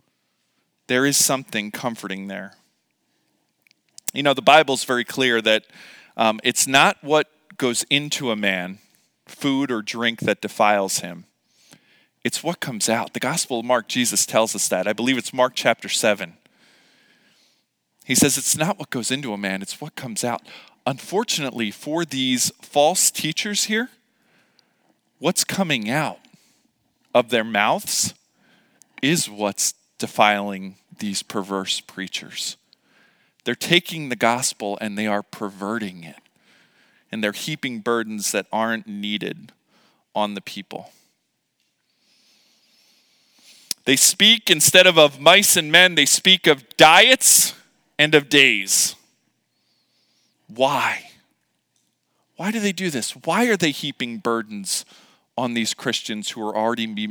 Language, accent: English, American